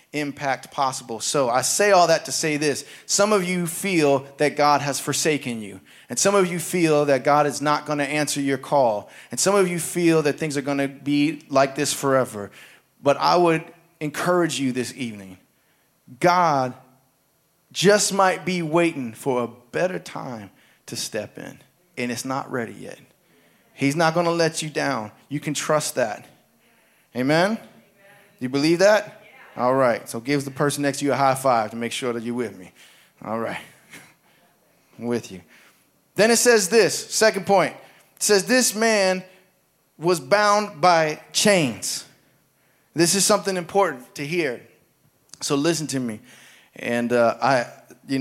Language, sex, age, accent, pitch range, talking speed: English, male, 20-39, American, 135-175 Hz, 170 wpm